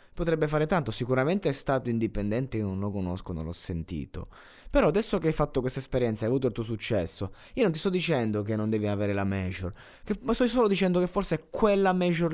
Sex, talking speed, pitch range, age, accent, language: male, 225 wpm, 95-155 Hz, 20-39, native, Italian